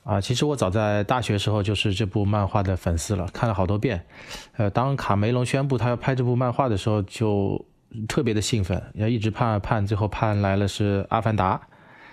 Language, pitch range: Chinese, 100-120 Hz